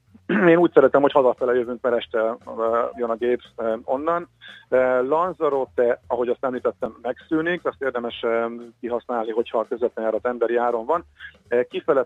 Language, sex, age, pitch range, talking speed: Hungarian, male, 40-59, 120-145 Hz, 135 wpm